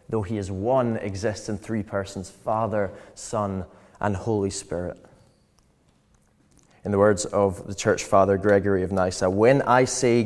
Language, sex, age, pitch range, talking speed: English, male, 20-39, 95-125 Hz, 150 wpm